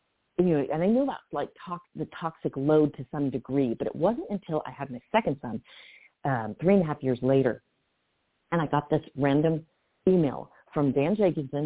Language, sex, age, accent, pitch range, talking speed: English, female, 40-59, American, 130-175 Hz, 195 wpm